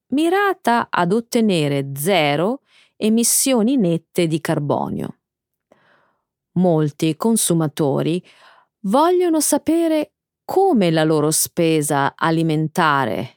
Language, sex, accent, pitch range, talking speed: Italian, female, native, 155-250 Hz, 75 wpm